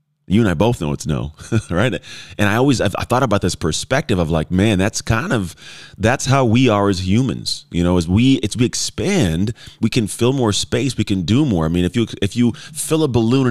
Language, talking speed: English, 235 wpm